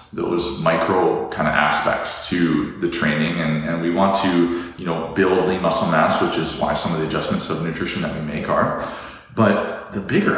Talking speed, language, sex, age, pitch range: 200 wpm, English, male, 20-39, 75-100 Hz